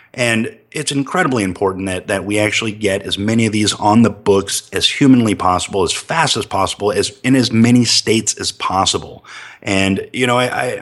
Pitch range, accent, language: 105-125 Hz, American, English